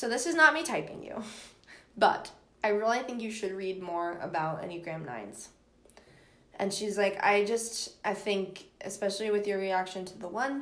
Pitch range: 190-220 Hz